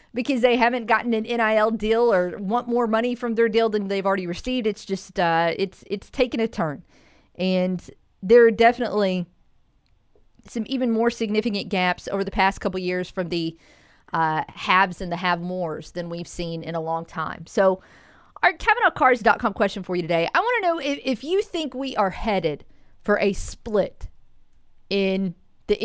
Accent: American